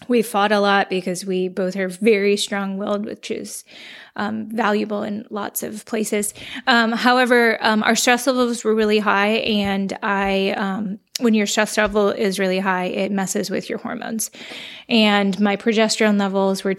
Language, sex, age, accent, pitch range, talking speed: English, female, 20-39, American, 190-215 Hz, 170 wpm